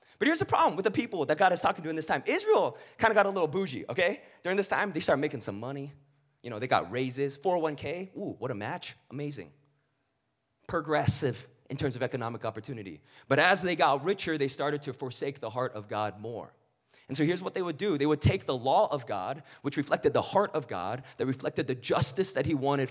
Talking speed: 235 wpm